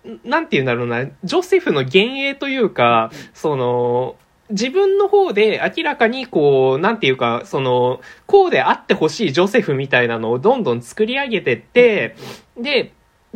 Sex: male